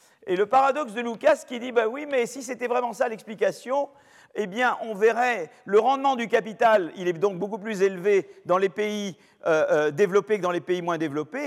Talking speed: 210 wpm